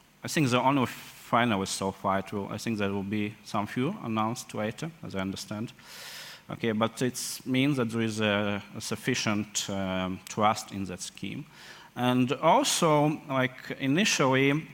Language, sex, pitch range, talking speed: English, male, 100-120 Hz, 165 wpm